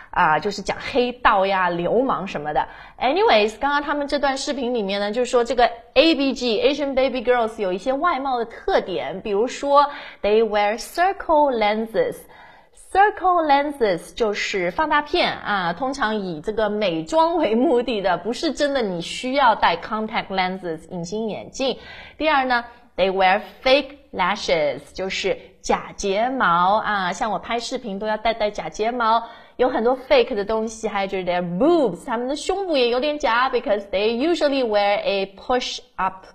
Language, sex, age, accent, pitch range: Chinese, female, 20-39, native, 195-275 Hz